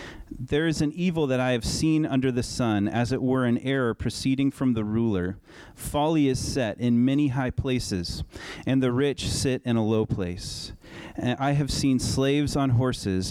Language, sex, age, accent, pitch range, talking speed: English, male, 30-49, American, 105-130 Hz, 185 wpm